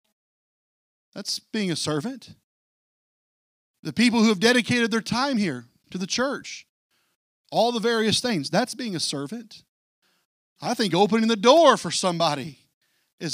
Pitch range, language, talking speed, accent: 165-235 Hz, English, 140 wpm, American